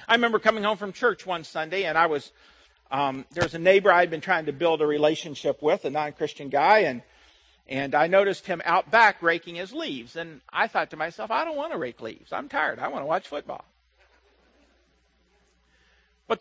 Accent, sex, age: American, male, 50-69